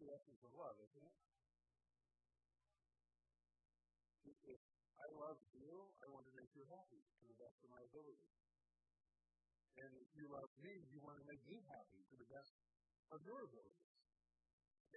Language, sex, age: English, female, 50-69